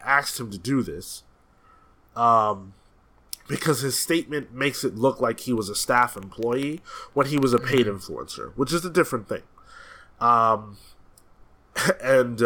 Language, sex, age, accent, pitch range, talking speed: English, male, 20-39, American, 105-140 Hz, 150 wpm